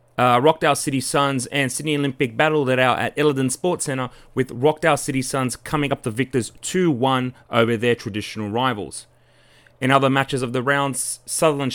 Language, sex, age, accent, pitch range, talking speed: English, male, 30-49, Australian, 125-150 Hz, 175 wpm